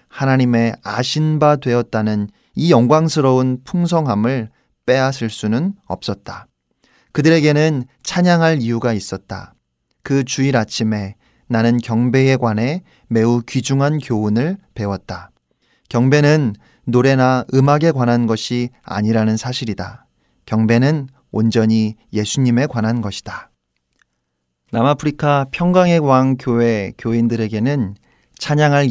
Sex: male